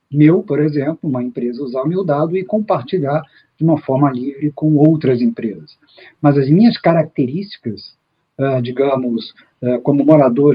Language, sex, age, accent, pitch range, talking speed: Portuguese, male, 50-69, Brazilian, 130-170 Hz, 140 wpm